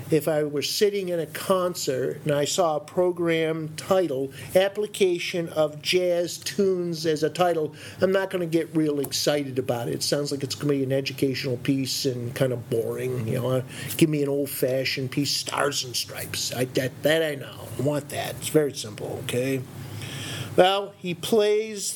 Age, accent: 50-69, American